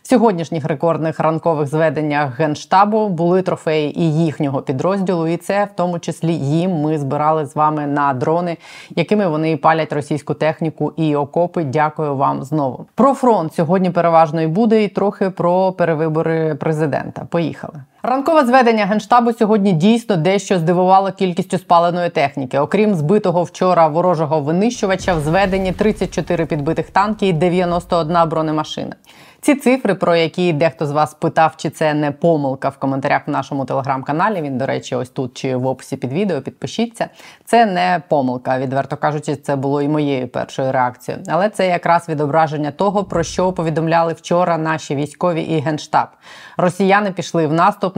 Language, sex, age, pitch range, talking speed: Ukrainian, female, 20-39, 150-185 Hz, 155 wpm